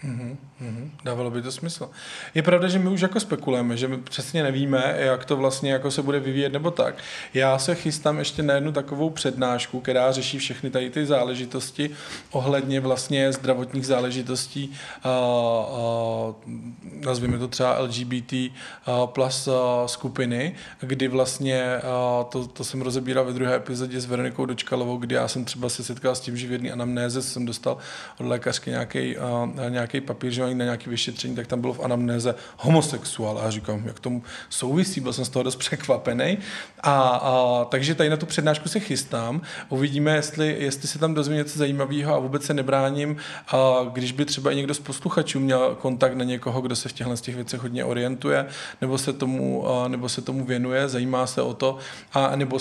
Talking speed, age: 180 wpm, 20-39